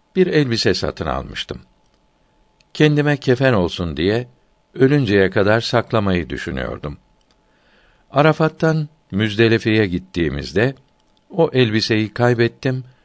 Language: Turkish